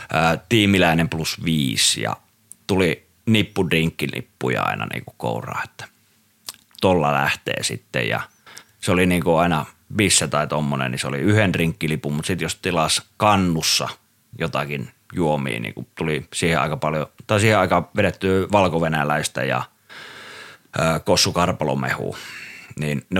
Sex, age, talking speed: male, 30-49, 125 wpm